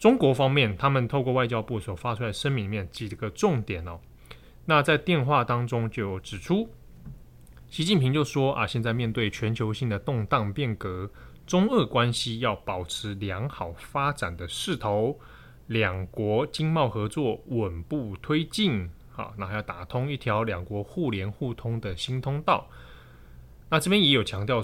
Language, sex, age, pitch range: Chinese, male, 20-39, 100-135 Hz